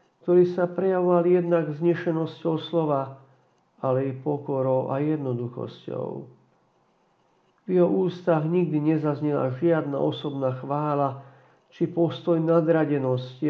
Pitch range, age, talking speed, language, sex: 130-165 Hz, 50-69, 100 wpm, Slovak, male